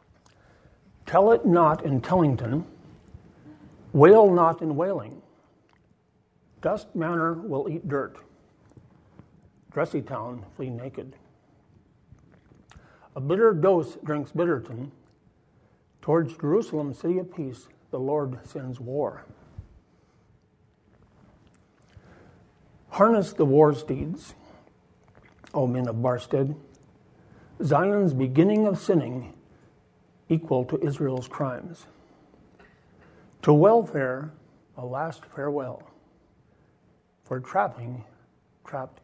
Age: 60-79